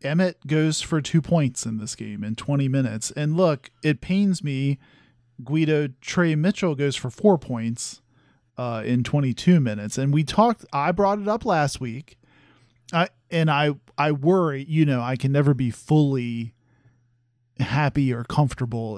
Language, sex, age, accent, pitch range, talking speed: English, male, 40-59, American, 125-165 Hz, 160 wpm